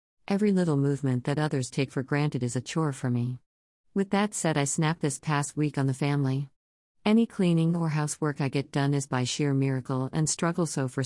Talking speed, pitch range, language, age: 210 wpm, 130-160 Hz, English, 50-69